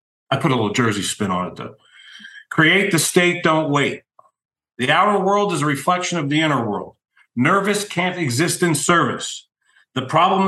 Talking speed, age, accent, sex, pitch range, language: 180 wpm, 50-69, American, male, 125-170 Hz, English